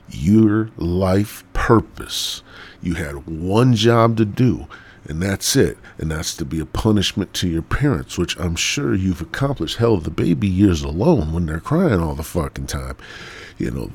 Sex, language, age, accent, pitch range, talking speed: male, English, 50-69, American, 90-130 Hz, 175 wpm